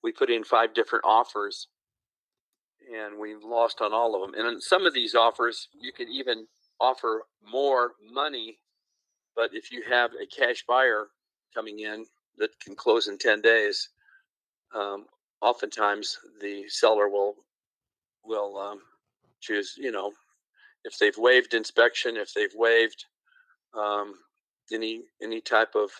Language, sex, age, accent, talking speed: English, male, 50-69, American, 145 wpm